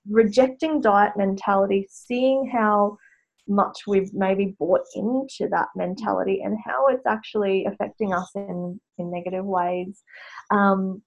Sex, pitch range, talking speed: female, 195-260 Hz, 125 wpm